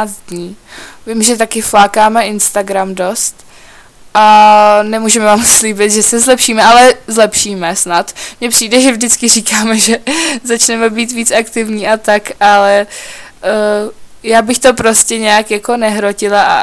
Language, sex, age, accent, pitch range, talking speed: Czech, female, 20-39, native, 205-225 Hz, 135 wpm